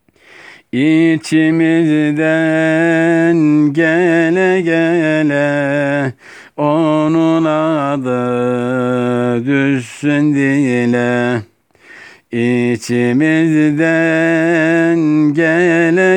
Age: 60-79